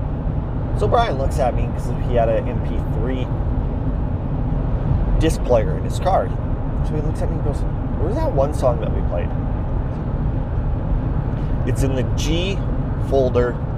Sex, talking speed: male, 150 wpm